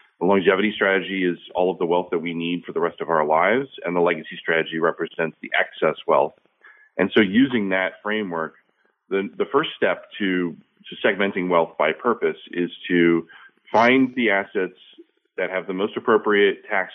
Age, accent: 30-49, American